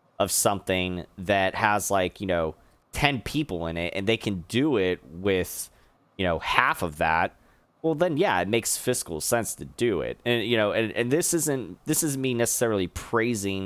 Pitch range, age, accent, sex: 95-115 Hz, 20-39, American, male